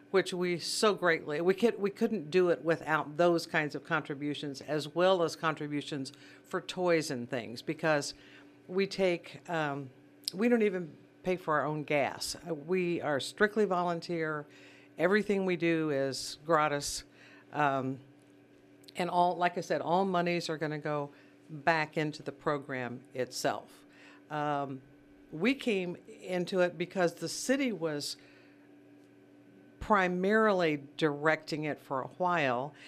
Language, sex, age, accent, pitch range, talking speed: English, female, 60-79, American, 140-180 Hz, 140 wpm